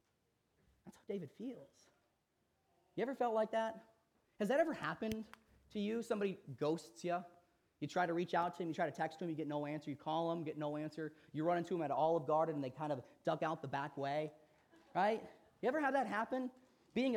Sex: male